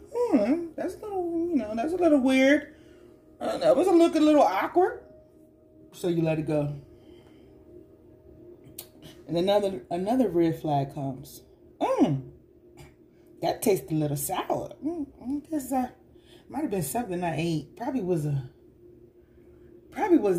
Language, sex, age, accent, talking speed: English, female, 30-49, American, 155 wpm